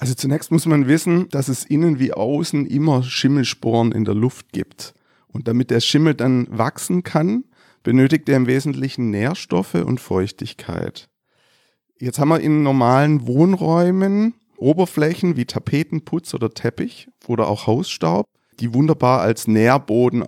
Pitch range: 115-145 Hz